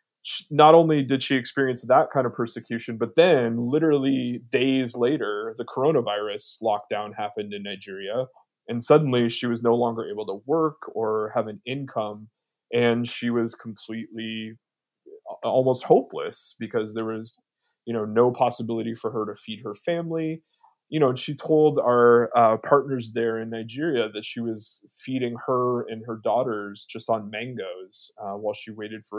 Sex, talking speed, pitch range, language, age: male, 160 wpm, 110-135 Hz, English, 20-39